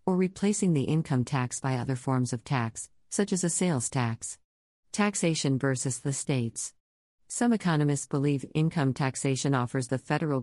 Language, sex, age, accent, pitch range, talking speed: English, female, 50-69, American, 130-155 Hz, 155 wpm